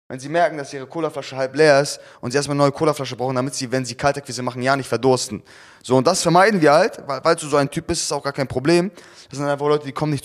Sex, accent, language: male, German, German